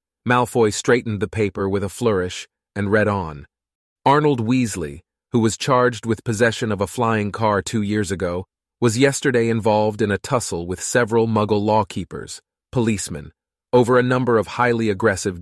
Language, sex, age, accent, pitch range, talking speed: English, male, 30-49, American, 95-115 Hz, 160 wpm